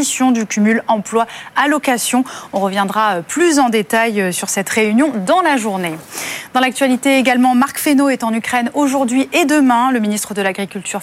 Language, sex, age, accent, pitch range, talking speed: French, female, 30-49, French, 205-275 Hz, 160 wpm